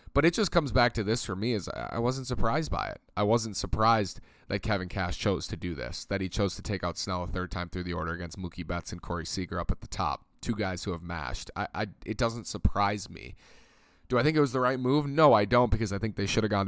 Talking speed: 275 wpm